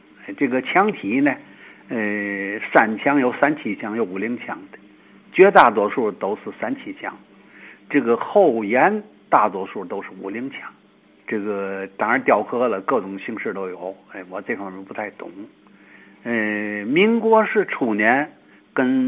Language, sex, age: Chinese, male, 60-79